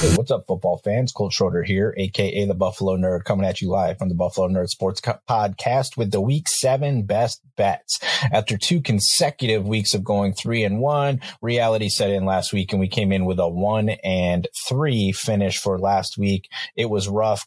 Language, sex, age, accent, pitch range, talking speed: English, male, 30-49, American, 100-125 Hz, 200 wpm